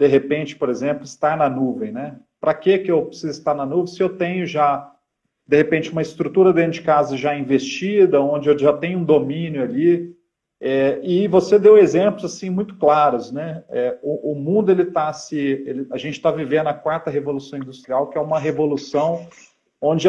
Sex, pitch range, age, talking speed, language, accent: male, 145-185 Hz, 40-59, 185 wpm, Portuguese, Brazilian